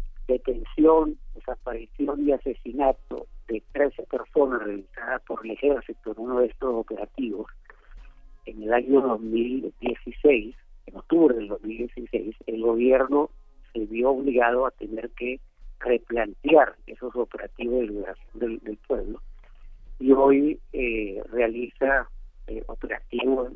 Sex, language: male, Spanish